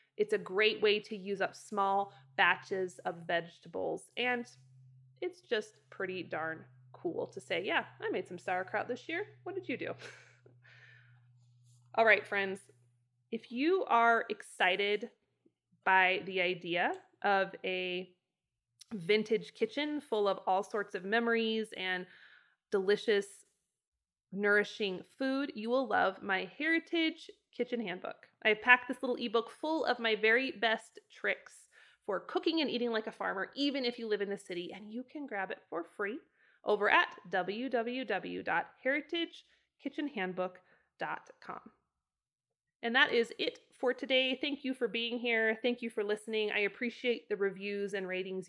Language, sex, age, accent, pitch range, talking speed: English, female, 20-39, American, 190-260 Hz, 145 wpm